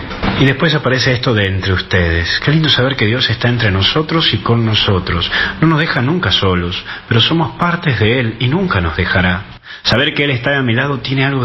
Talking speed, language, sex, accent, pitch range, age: 215 wpm, Spanish, male, Argentinian, 95-140 Hz, 40-59